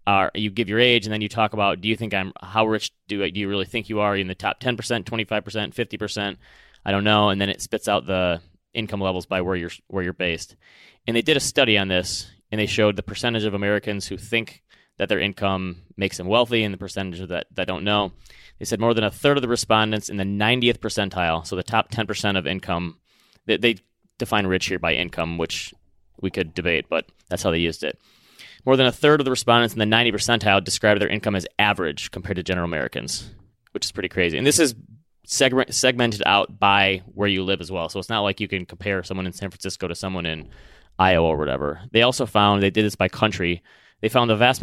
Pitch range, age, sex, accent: 90-110 Hz, 30-49, male, American